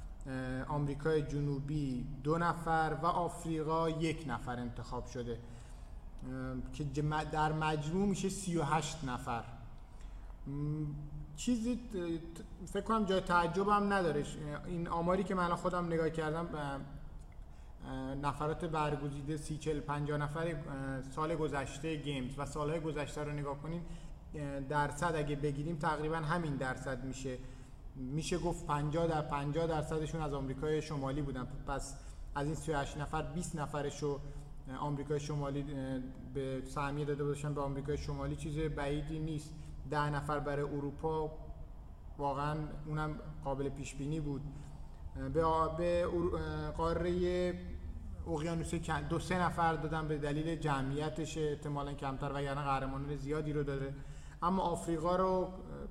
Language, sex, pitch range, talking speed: Persian, male, 135-160 Hz, 120 wpm